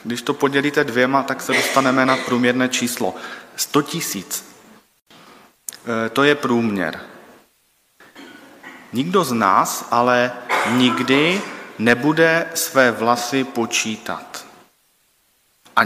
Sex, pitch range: male, 115-145 Hz